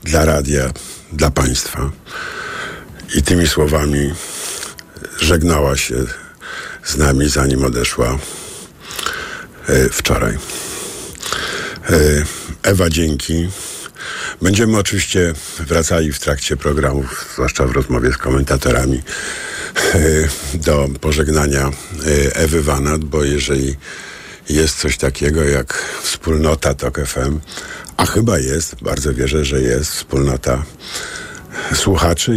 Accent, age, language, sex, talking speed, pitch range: native, 50-69, Polish, male, 90 wpm, 70-85 Hz